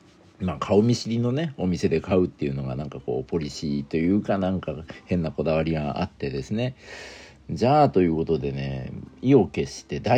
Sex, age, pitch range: male, 50-69, 75-125 Hz